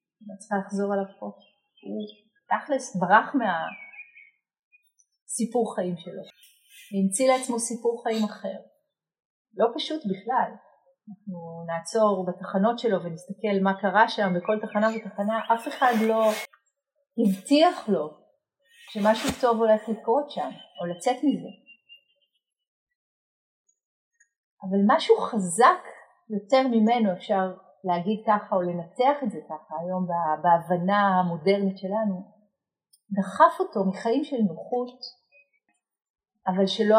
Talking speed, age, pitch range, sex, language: 110 wpm, 40-59, 190-235 Hz, female, Hebrew